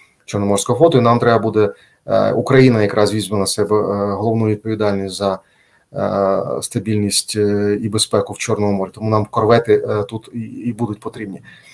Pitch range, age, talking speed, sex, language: 110-135 Hz, 30-49, 135 wpm, male, Ukrainian